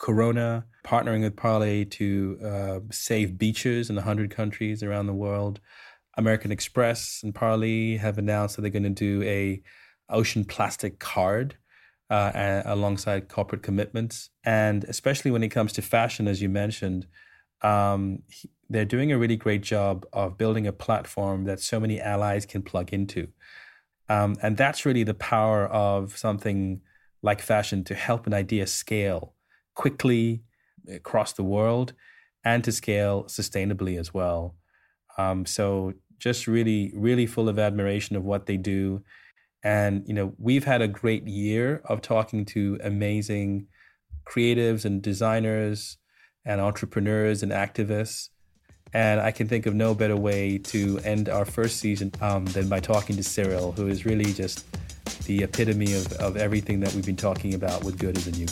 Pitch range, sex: 100-110 Hz, male